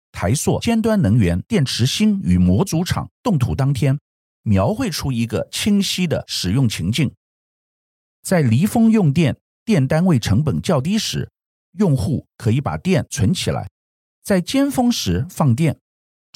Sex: male